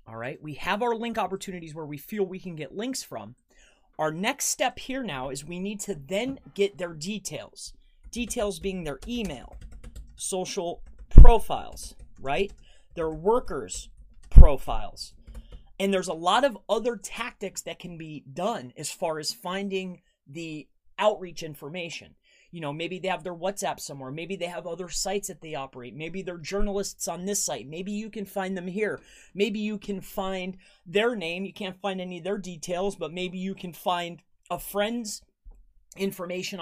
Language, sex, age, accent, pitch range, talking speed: English, male, 30-49, American, 170-205 Hz, 170 wpm